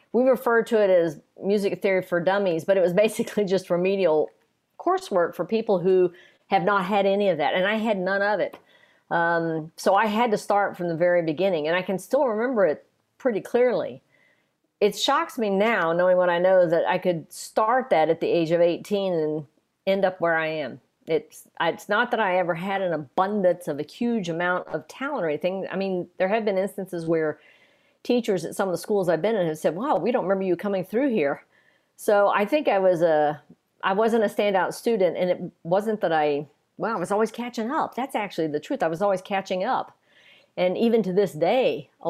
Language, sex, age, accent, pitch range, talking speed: English, female, 50-69, American, 170-210 Hz, 220 wpm